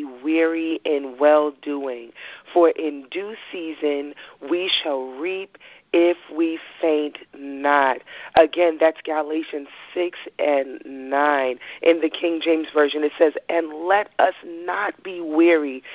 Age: 40-59